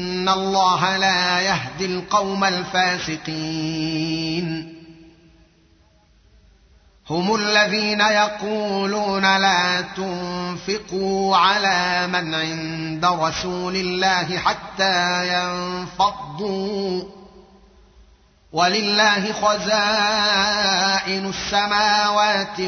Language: Arabic